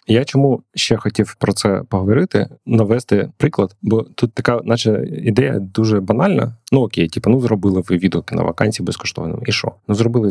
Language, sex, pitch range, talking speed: Ukrainian, male, 95-115 Hz, 175 wpm